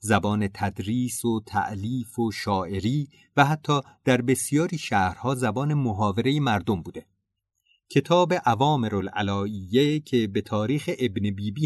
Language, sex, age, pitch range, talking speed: Persian, male, 30-49, 100-140 Hz, 120 wpm